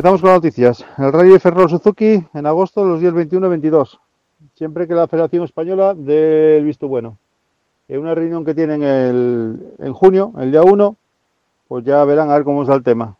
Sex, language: male, Spanish